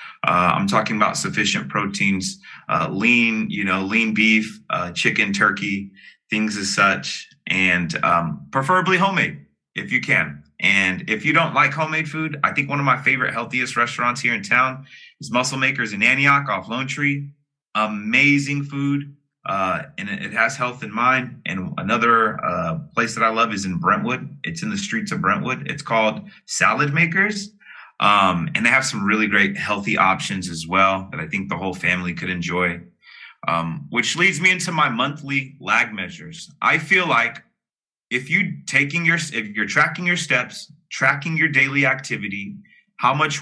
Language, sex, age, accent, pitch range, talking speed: English, male, 30-49, American, 105-160 Hz, 175 wpm